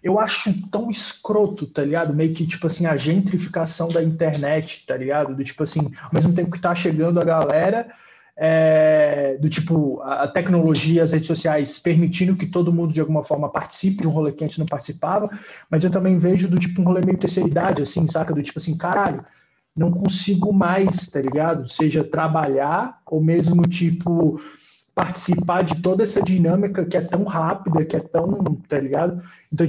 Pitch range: 155-185 Hz